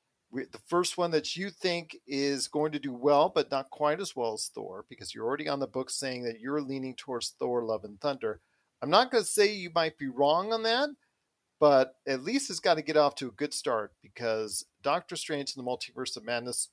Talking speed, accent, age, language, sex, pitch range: 230 wpm, American, 40-59, English, male, 125-155 Hz